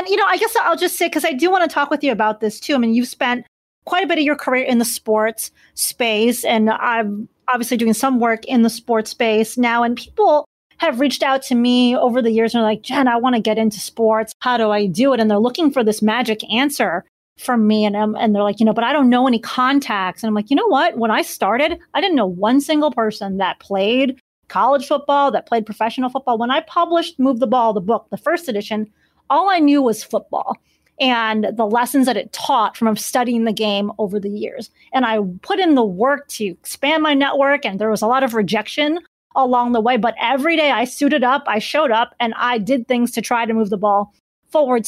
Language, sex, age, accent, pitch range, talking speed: English, female, 30-49, American, 220-280 Hz, 245 wpm